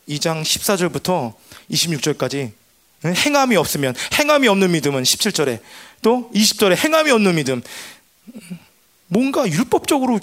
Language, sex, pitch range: Korean, male, 145-205 Hz